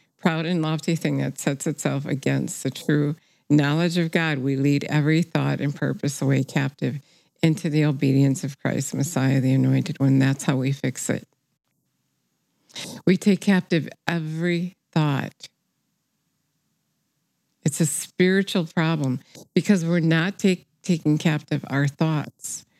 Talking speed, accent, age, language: 135 wpm, American, 60-79, English